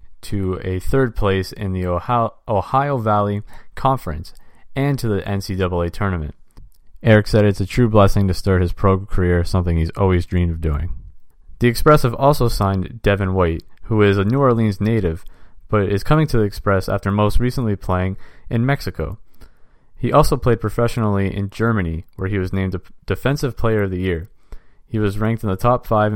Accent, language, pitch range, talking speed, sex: American, English, 90-110 Hz, 180 wpm, male